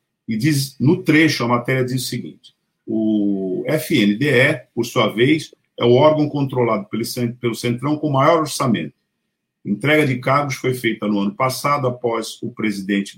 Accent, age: Brazilian, 50-69